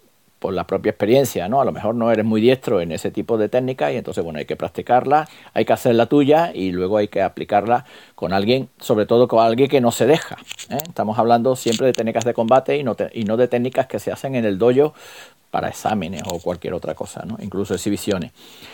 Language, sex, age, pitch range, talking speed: Spanish, male, 40-59, 115-145 Hz, 235 wpm